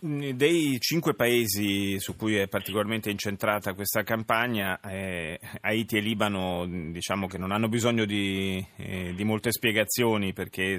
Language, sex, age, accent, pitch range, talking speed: Italian, male, 30-49, native, 90-105 Hz, 140 wpm